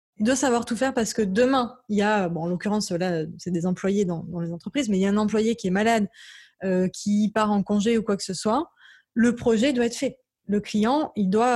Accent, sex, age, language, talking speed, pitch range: French, female, 20-39, French, 260 wpm, 205-245 Hz